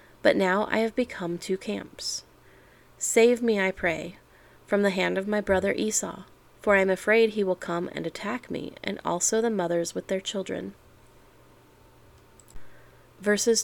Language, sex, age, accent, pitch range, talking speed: English, female, 30-49, American, 185-230 Hz, 160 wpm